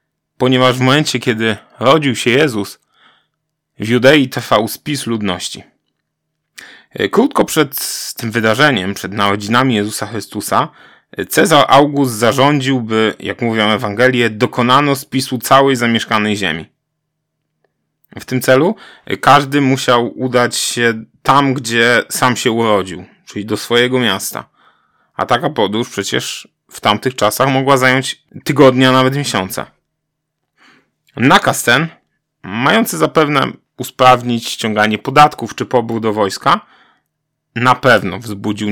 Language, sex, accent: Polish, male, native